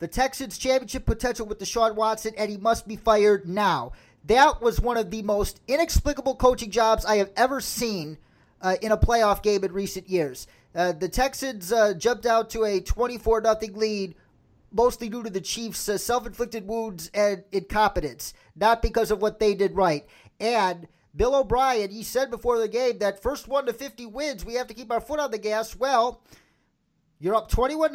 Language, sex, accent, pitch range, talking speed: English, male, American, 215-290 Hz, 185 wpm